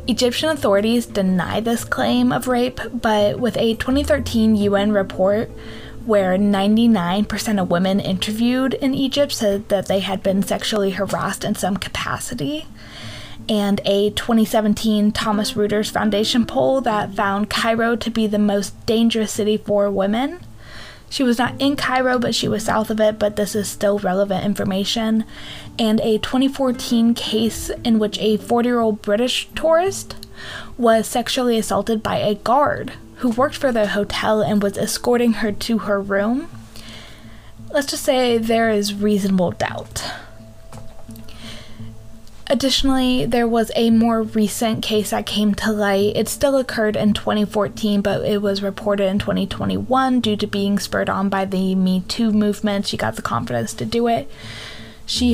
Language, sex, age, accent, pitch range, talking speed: English, female, 20-39, American, 195-230 Hz, 150 wpm